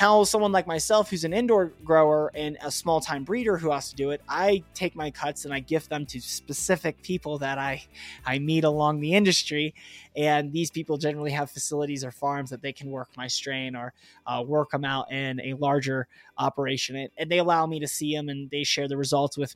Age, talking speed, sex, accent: 20-39, 220 wpm, male, American